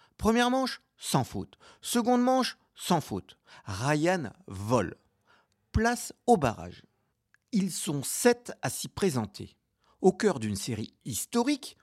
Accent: French